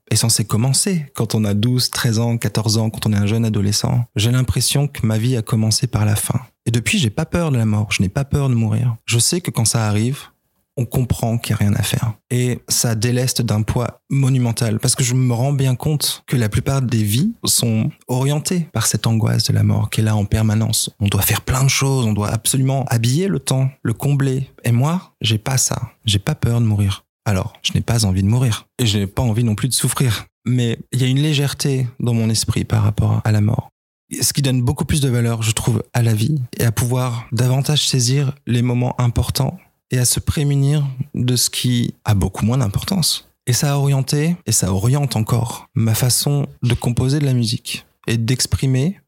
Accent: French